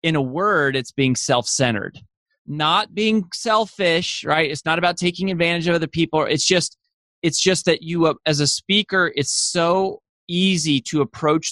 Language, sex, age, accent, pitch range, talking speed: English, male, 20-39, American, 135-170 Hz, 165 wpm